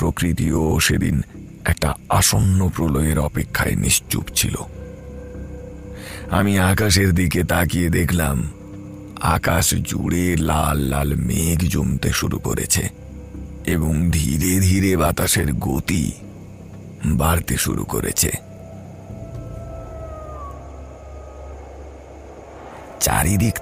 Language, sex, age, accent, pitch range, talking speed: Bengali, male, 50-69, native, 75-100 Hz, 75 wpm